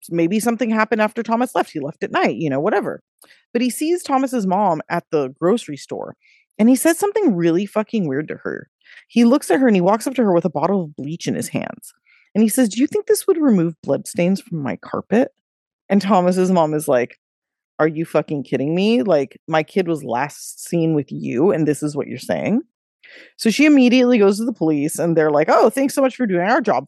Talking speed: 235 wpm